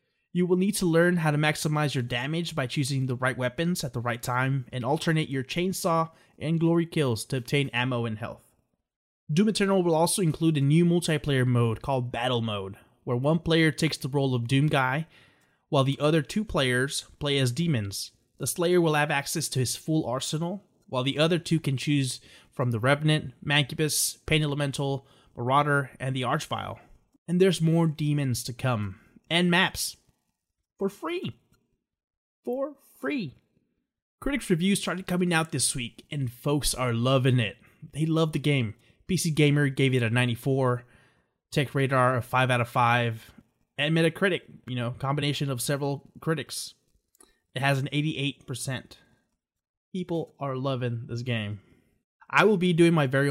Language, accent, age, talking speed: English, American, 20-39, 165 wpm